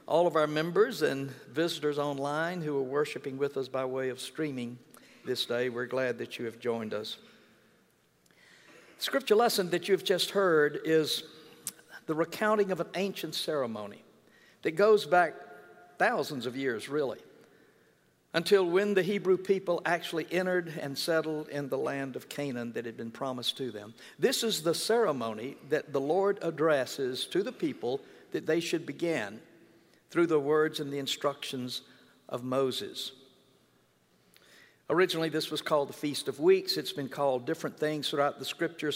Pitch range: 135-175 Hz